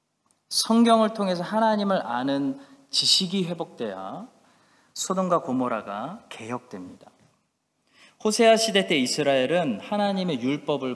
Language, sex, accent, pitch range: Korean, male, native, 155-230 Hz